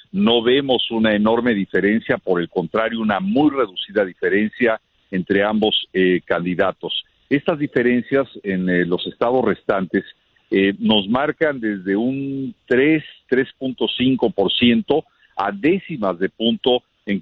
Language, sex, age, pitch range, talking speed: Spanish, male, 50-69, 100-125 Hz, 120 wpm